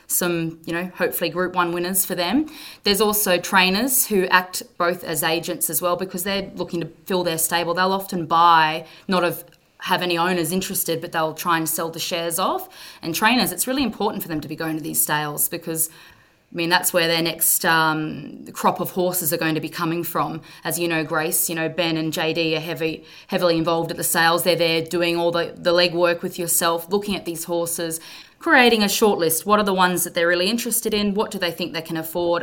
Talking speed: 225 wpm